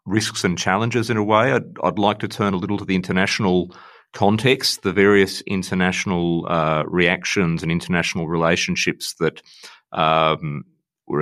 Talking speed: 150 wpm